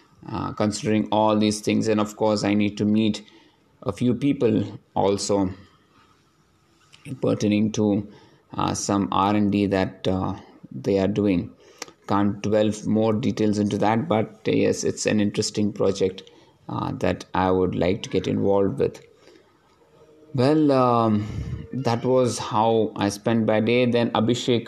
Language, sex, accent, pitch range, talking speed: English, male, Indian, 100-120 Hz, 145 wpm